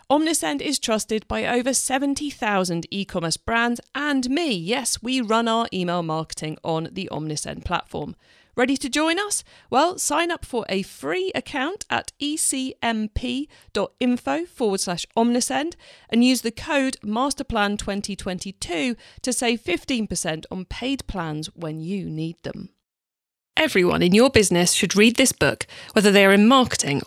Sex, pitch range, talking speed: female, 185-270 Hz, 140 wpm